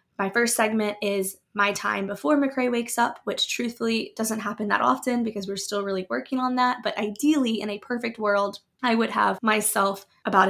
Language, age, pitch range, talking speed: English, 20-39, 200-235 Hz, 195 wpm